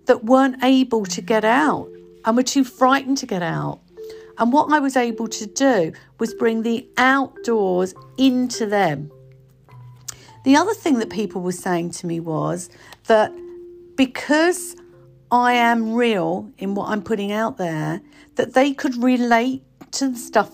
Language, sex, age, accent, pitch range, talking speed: English, female, 50-69, British, 180-260 Hz, 160 wpm